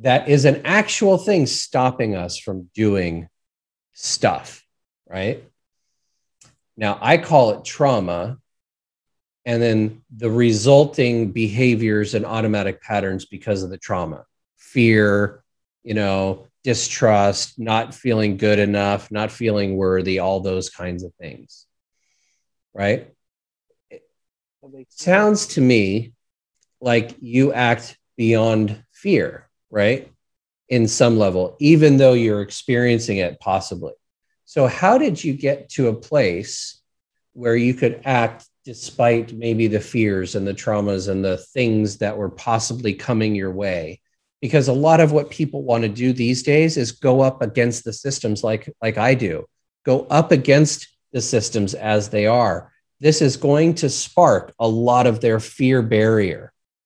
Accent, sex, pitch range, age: American, male, 105-130 Hz, 30-49